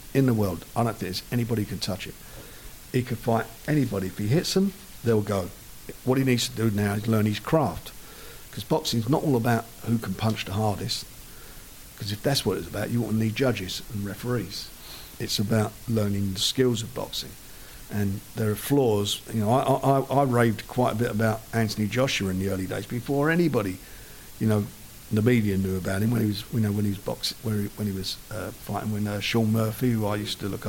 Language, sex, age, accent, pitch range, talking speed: English, male, 50-69, British, 105-120 Hz, 225 wpm